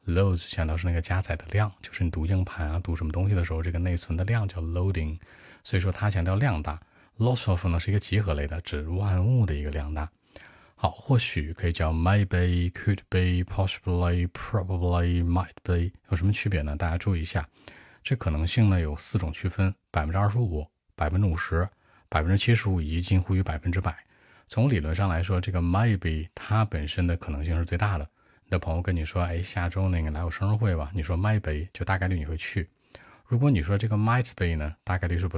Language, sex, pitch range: Chinese, male, 85-105 Hz